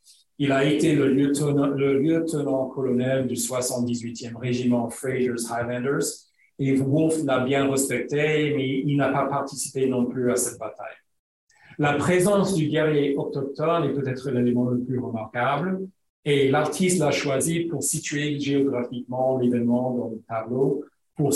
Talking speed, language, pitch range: 140 wpm, French, 125-145 Hz